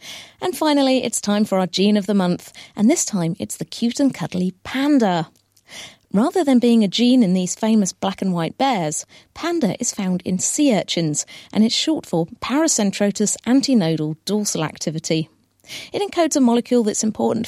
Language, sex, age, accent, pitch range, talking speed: English, female, 40-59, British, 180-250 Hz, 175 wpm